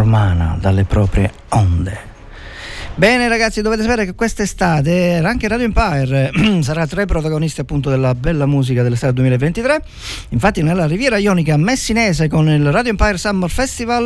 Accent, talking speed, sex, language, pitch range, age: native, 145 wpm, male, Italian, 120-195 Hz, 50-69